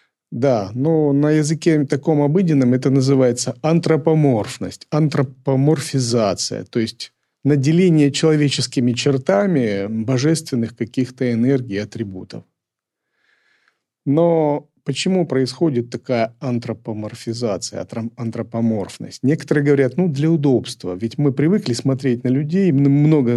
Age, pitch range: 40-59, 120-150 Hz